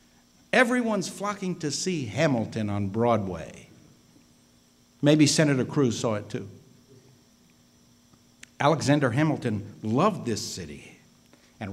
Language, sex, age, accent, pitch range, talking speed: English, male, 60-79, American, 130-185 Hz, 95 wpm